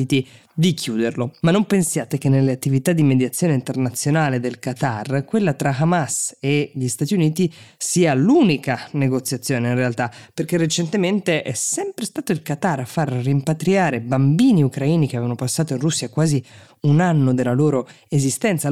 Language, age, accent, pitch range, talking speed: Italian, 20-39, native, 130-155 Hz, 155 wpm